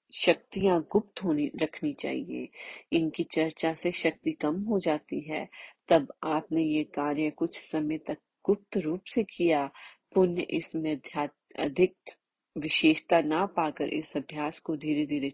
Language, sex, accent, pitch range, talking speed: Hindi, female, native, 155-185 Hz, 135 wpm